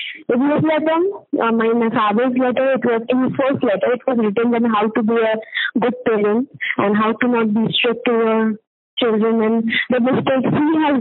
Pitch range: 225-270 Hz